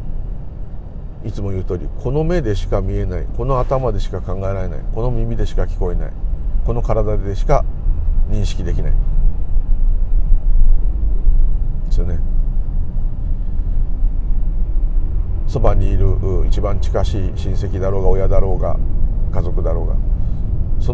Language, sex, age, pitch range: Japanese, male, 50-69, 80-105 Hz